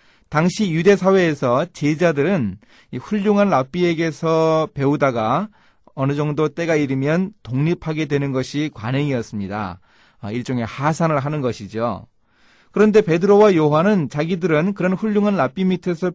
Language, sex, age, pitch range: Korean, male, 30-49, 130-175 Hz